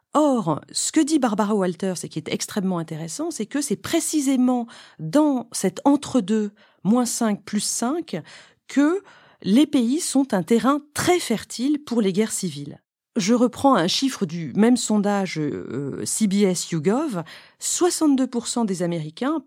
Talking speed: 145 wpm